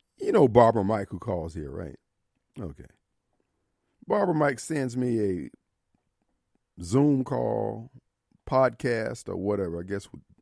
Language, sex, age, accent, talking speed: English, male, 50-69, American, 125 wpm